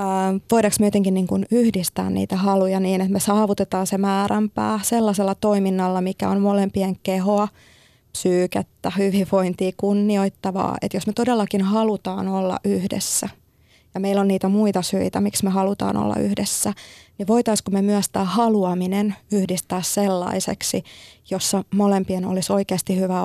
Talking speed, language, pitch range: 135 wpm, Finnish, 180-200 Hz